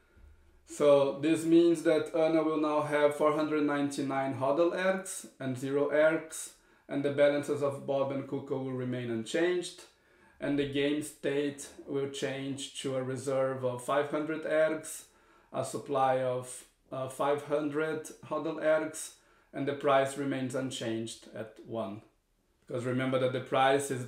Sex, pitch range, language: male, 130-150 Hz, English